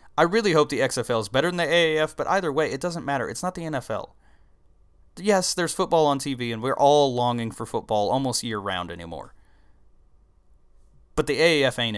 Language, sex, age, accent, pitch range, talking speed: English, male, 30-49, American, 100-140 Hz, 190 wpm